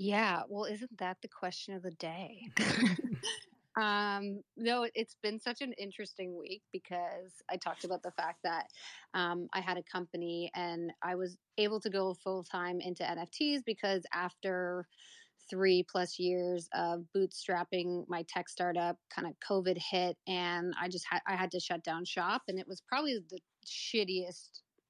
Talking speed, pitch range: 160 wpm, 180-210 Hz